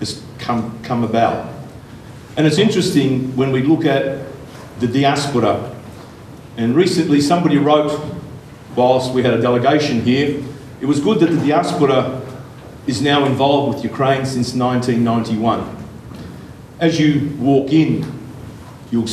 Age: 50-69